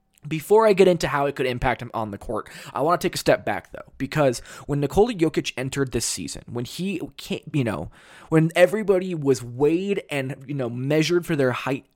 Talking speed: 210 wpm